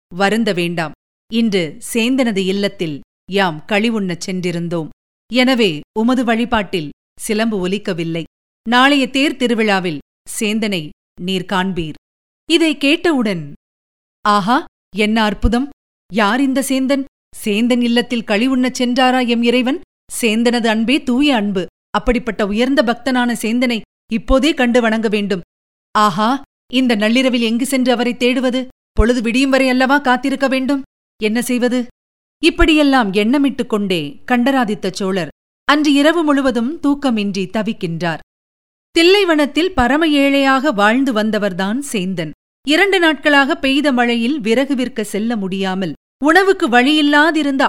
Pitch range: 205-270 Hz